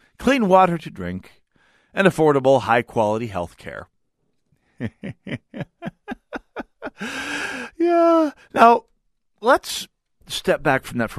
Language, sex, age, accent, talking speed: English, male, 40-59, American, 90 wpm